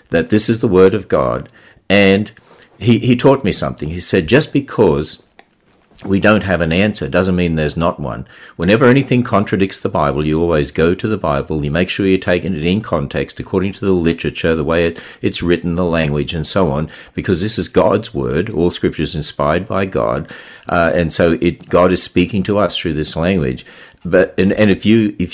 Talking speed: 210 wpm